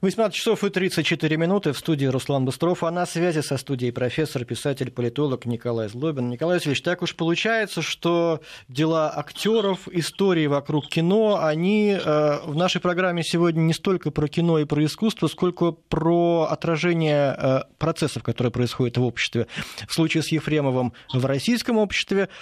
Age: 20-39